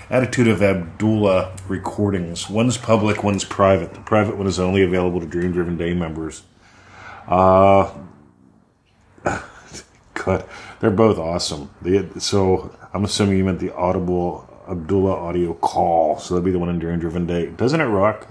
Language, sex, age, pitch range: English, male, 40-59, 90-105 Hz